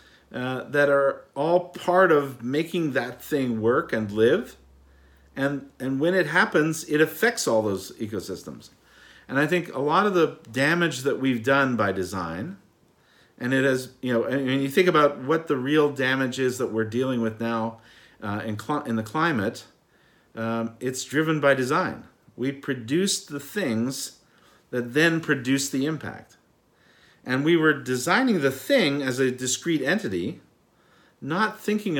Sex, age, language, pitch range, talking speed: male, 50-69, English, 120-155 Hz, 165 wpm